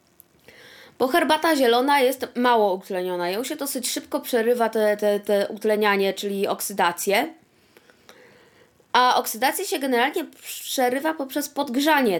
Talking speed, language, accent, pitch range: 115 wpm, Polish, native, 225-285 Hz